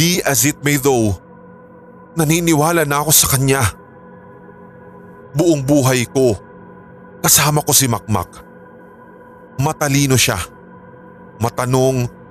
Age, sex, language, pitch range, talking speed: 20-39, male, Filipino, 120-160 Hz, 95 wpm